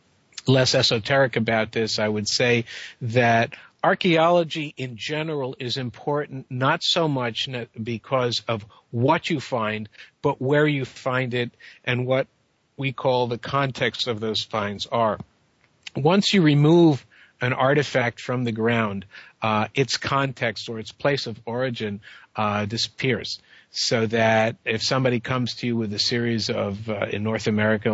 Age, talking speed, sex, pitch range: 50-69, 145 wpm, male, 110-130 Hz